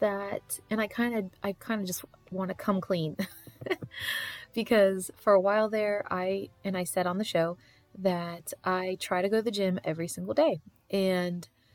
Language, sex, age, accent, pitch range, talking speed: English, female, 30-49, American, 170-215 Hz, 190 wpm